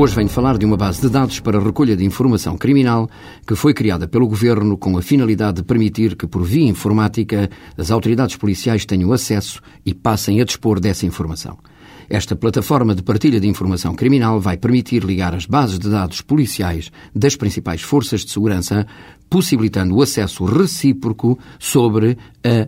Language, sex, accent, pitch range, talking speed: Portuguese, male, Portuguese, 95-125 Hz, 170 wpm